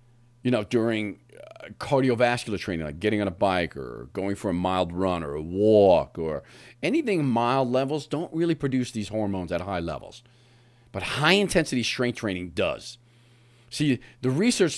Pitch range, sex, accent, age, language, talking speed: 110-135 Hz, male, American, 40-59, English, 160 wpm